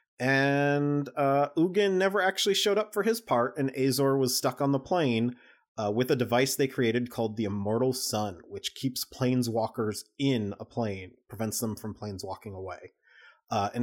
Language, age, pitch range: English, 30-49, 110-145 Hz